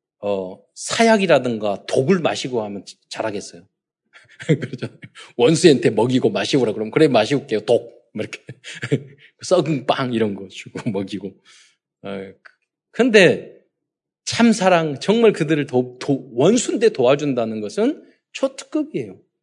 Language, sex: Korean, male